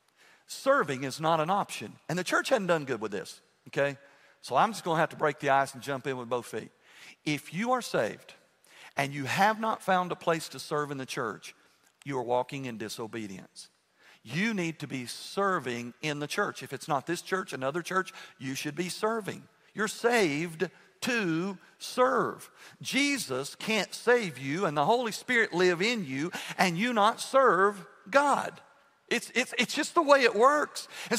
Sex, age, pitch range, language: male, 50-69, 150-225 Hz, English